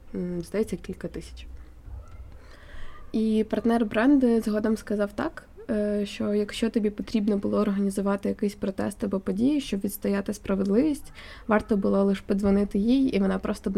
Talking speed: 135 wpm